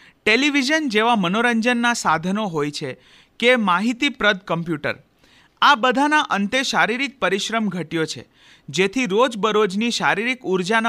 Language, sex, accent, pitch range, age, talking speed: Hindi, male, native, 170-245 Hz, 40-59, 90 wpm